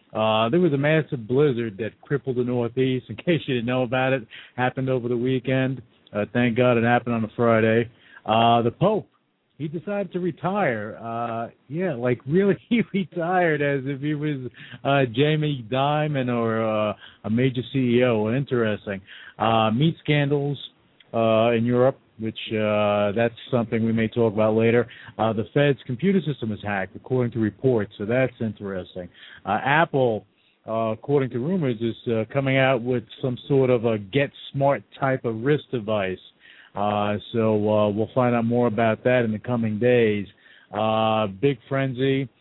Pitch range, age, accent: 110-135 Hz, 50-69, American